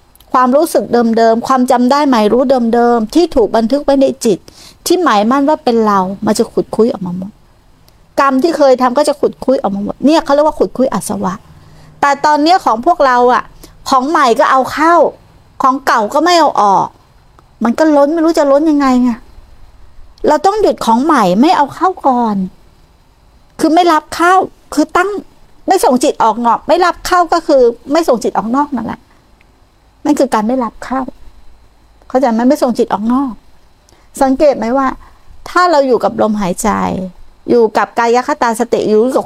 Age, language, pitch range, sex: 60-79, Thai, 225-290 Hz, female